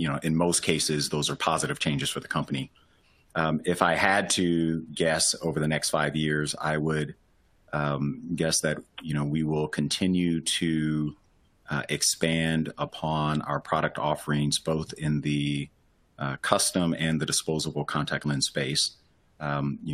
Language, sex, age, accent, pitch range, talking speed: English, male, 30-49, American, 75-80 Hz, 160 wpm